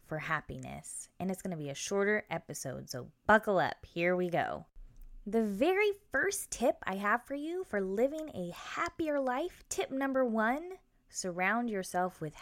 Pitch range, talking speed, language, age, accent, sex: 165-240 Hz, 170 wpm, English, 20-39, American, female